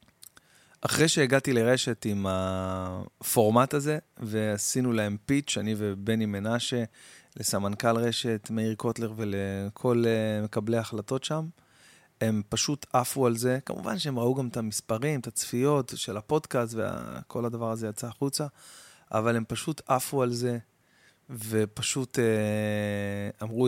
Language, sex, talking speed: Hebrew, male, 125 wpm